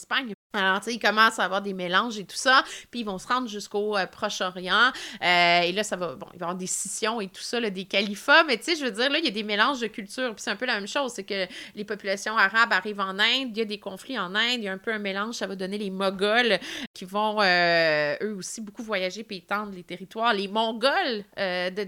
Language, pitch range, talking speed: French, 195-245 Hz, 275 wpm